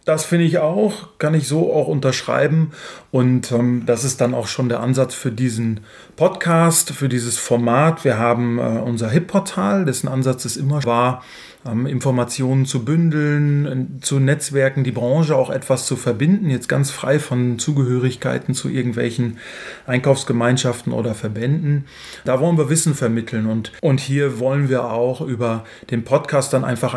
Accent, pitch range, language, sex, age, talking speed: German, 120-145 Hz, German, male, 30-49, 160 wpm